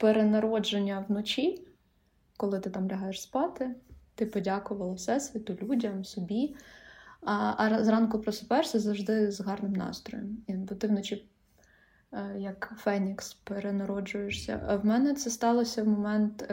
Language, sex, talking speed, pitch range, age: Ukrainian, female, 120 wpm, 200-230 Hz, 20-39